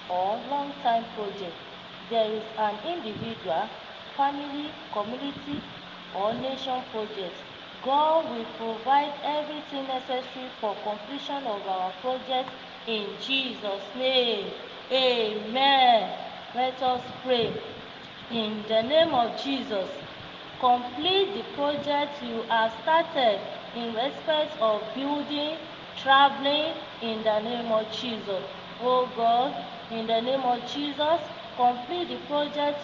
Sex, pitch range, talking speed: female, 225-290 Hz, 110 wpm